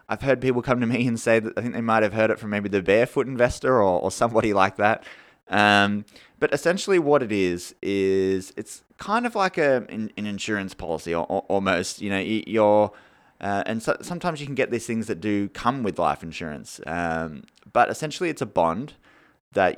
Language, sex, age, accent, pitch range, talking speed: English, male, 20-39, Australian, 90-115 Hz, 210 wpm